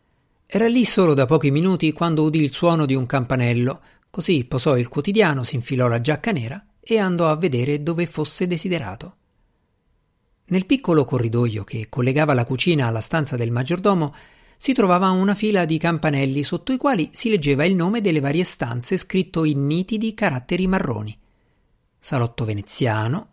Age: 50-69